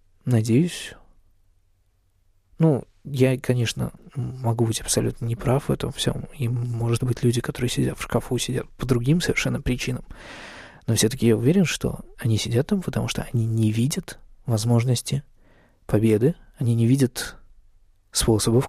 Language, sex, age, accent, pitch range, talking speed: Russian, male, 20-39, native, 105-130 Hz, 140 wpm